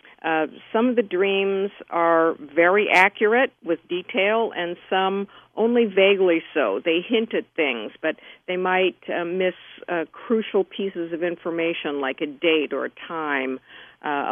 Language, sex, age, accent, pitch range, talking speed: English, female, 50-69, American, 165-205 Hz, 150 wpm